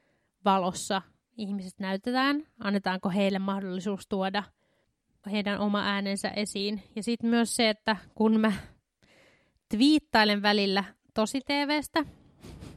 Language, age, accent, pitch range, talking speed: Finnish, 20-39, native, 195-230 Hz, 105 wpm